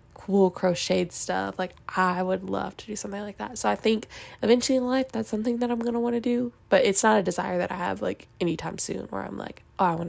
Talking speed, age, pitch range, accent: 260 wpm, 10-29, 180-205 Hz, American